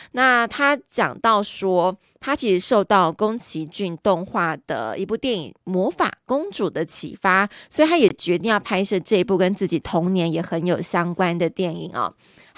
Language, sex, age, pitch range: Chinese, female, 30-49, 180-235 Hz